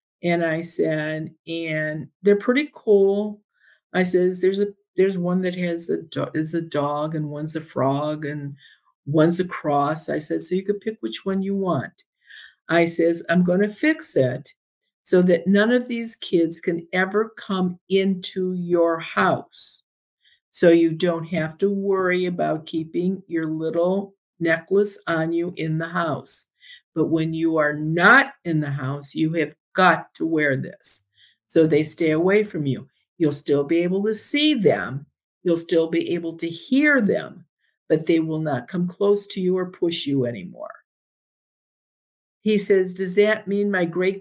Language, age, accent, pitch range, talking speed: English, 50-69, American, 160-200 Hz, 170 wpm